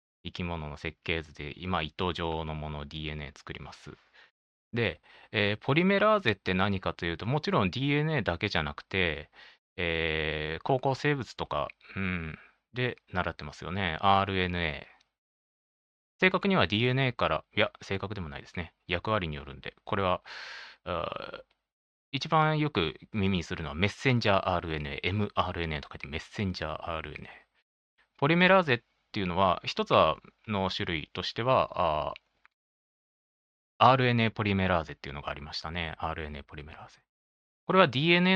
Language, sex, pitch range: Japanese, male, 80-130 Hz